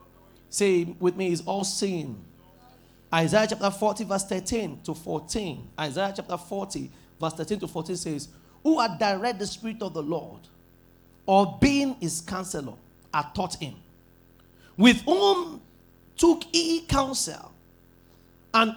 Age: 40-59